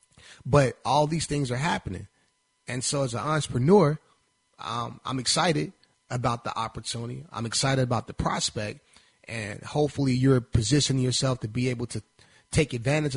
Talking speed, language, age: 150 wpm, English, 30-49